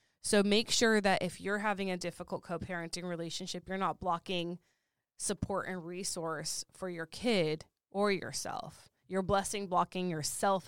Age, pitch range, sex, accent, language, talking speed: 20-39, 170-195 Hz, female, American, English, 145 wpm